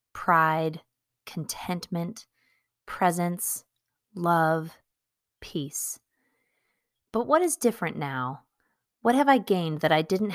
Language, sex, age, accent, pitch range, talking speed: English, female, 30-49, American, 160-225 Hz, 100 wpm